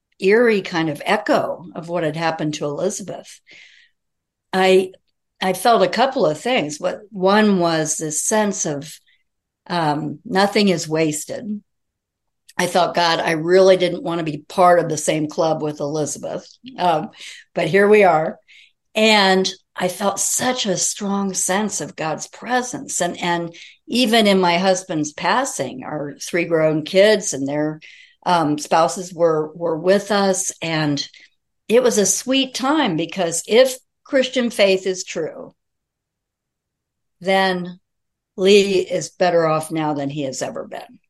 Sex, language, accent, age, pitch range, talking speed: female, English, American, 60-79, 155-200 Hz, 145 wpm